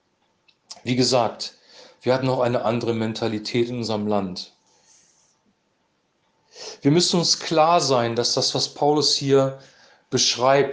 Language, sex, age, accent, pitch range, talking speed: German, male, 40-59, German, 130-155 Hz, 125 wpm